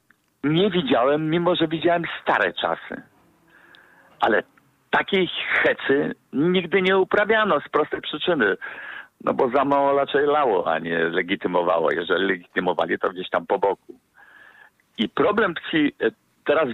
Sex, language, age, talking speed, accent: male, Polish, 50-69, 125 wpm, native